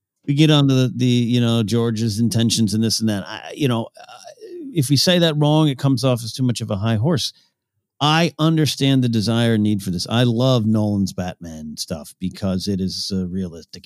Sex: male